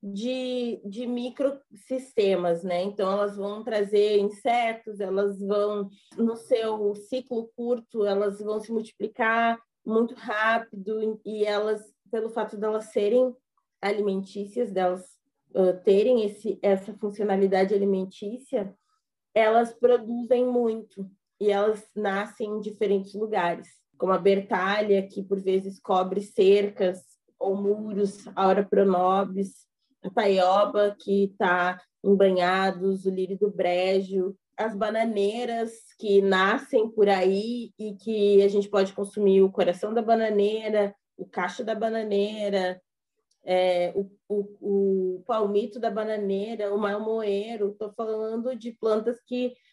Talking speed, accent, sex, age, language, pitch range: 120 wpm, Brazilian, female, 20-39, Portuguese, 195-230 Hz